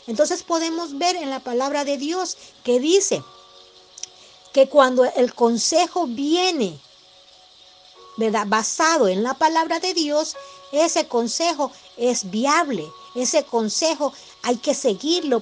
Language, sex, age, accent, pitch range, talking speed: Spanish, female, 50-69, American, 225-325 Hz, 115 wpm